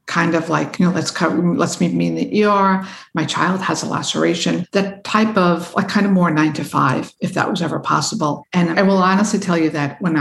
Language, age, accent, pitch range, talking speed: English, 60-79, American, 165-190 Hz, 240 wpm